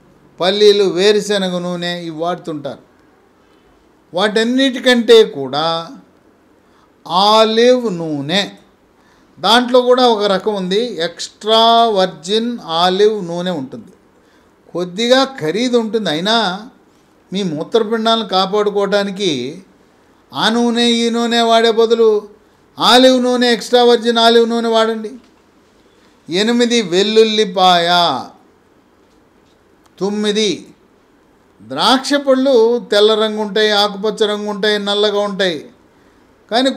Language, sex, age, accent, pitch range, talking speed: English, male, 50-69, Indian, 185-230 Hz, 85 wpm